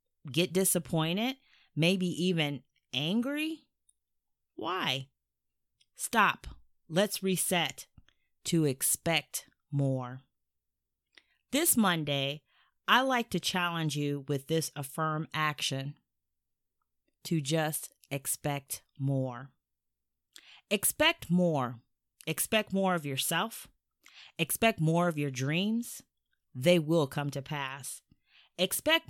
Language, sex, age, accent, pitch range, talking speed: English, female, 30-49, American, 135-185 Hz, 90 wpm